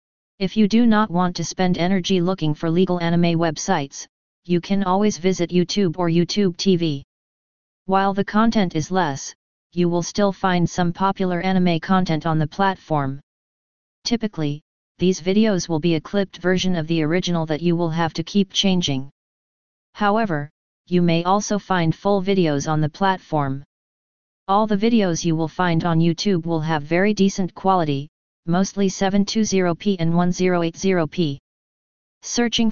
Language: English